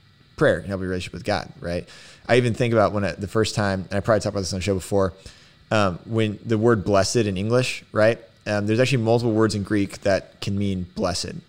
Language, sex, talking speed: English, male, 235 wpm